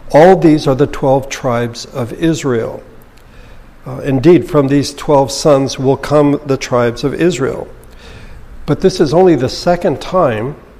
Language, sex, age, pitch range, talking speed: English, male, 60-79, 120-145 Hz, 150 wpm